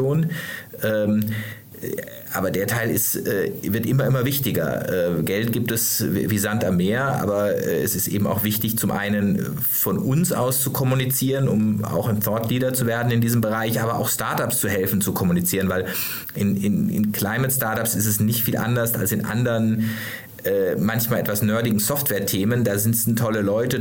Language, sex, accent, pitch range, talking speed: German, male, German, 105-120 Hz, 170 wpm